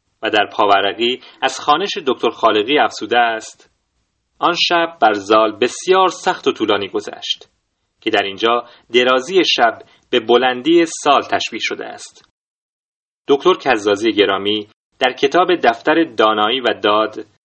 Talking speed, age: 130 wpm, 30-49